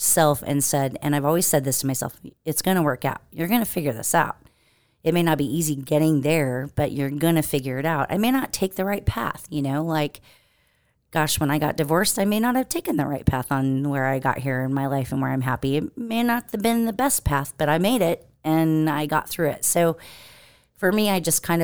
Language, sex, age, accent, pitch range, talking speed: English, female, 30-49, American, 135-165 Hz, 260 wpm